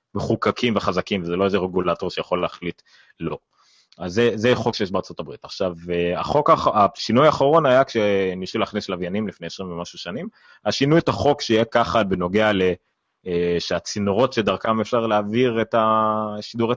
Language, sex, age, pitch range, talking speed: Hebrew, male, 30-49, 95-120 Hz, 140 wpm